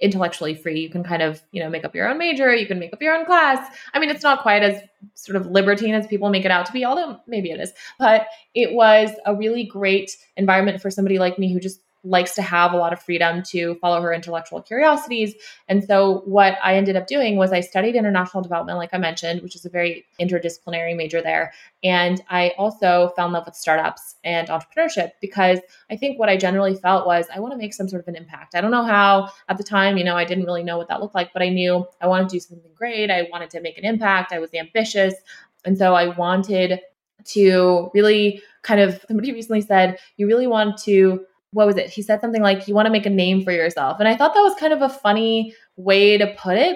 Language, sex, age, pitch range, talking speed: English, female, 20-39, 180-215 Hz, 245 wpm